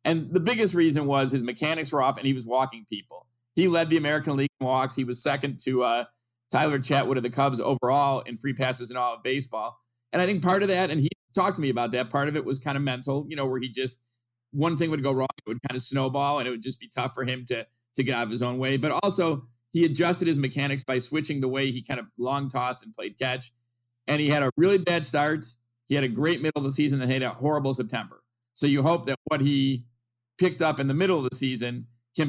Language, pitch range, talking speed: English, 125-155 Hz, 265 wpm